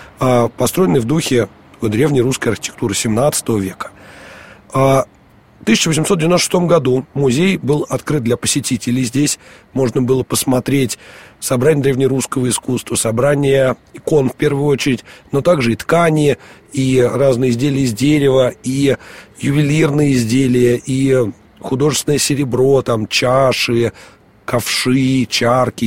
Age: 40-59